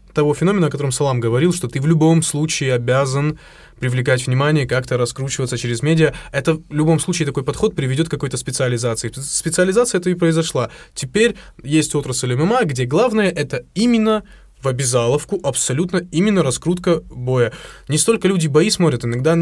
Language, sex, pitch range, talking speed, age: Russian, male, 125-170 Hz, 165 wpm, 20-39